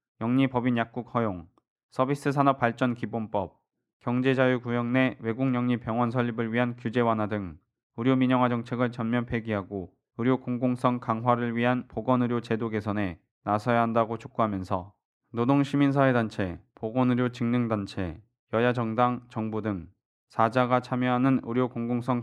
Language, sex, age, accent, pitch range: Korean, male, 20-39, native, 115-130 Hz